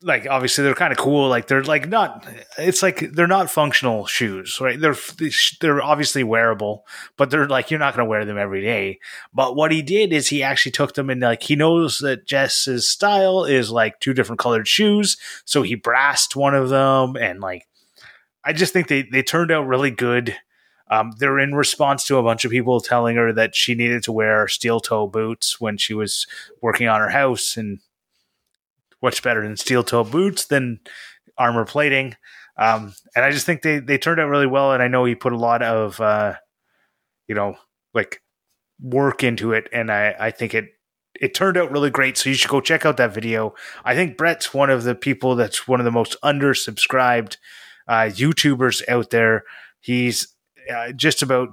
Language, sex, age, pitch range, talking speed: English, male, 30-49, 115-145 Hz, 200 wpm